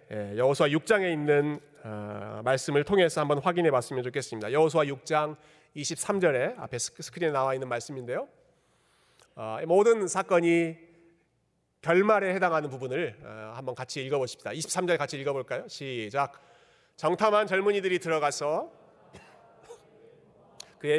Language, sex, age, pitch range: Korean, male, 40-59, 130-180 Hz